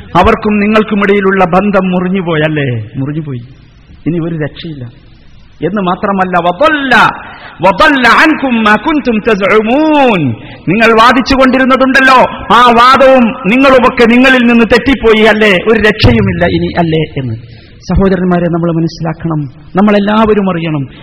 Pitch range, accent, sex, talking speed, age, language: 150-195 Hz, native, male, 90 wpm, 50-69, Malayalam